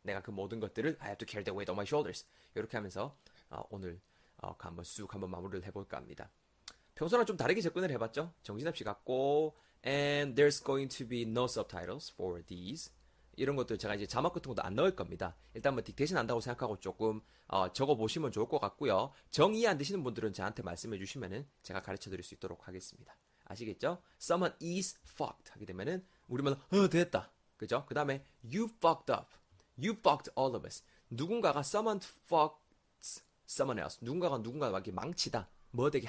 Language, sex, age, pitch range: Korean, male, 20-39, 100-155 Hz